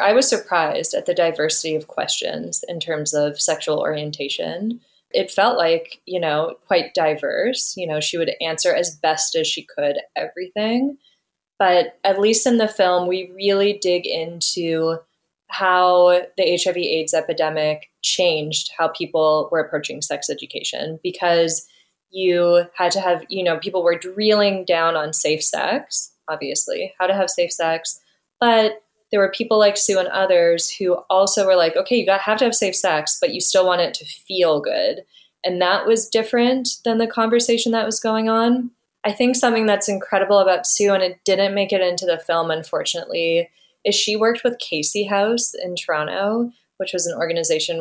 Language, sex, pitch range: English, female, 170-220 Hz